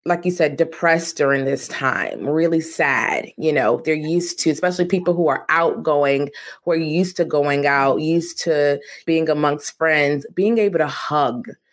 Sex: female